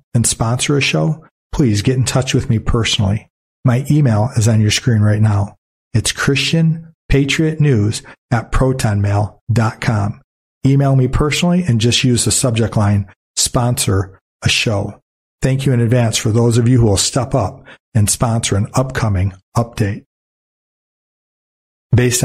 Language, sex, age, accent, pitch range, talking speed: English, male, 40-59, American, 110-135 Hz, 150 wpm